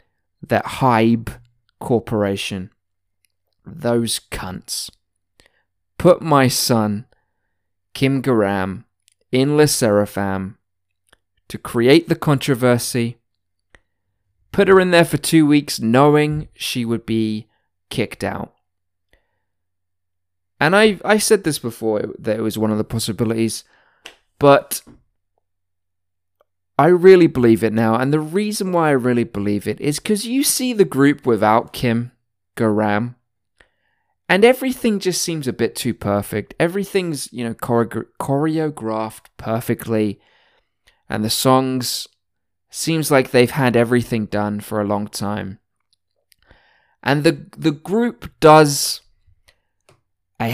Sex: male